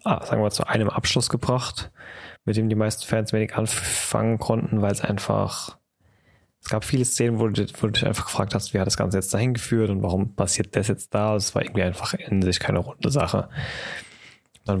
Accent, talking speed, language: German, 220 wpm, German